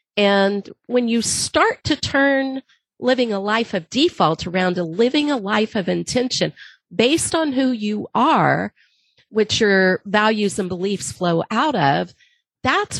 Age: 40-59